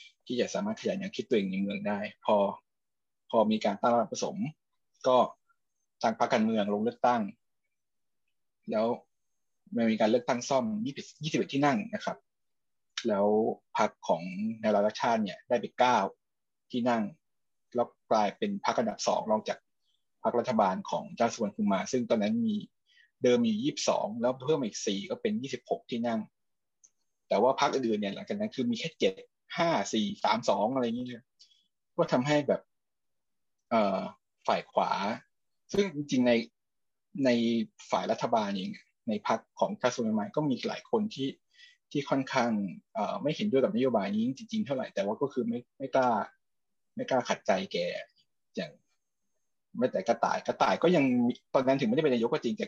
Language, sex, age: Thai, male, 20-39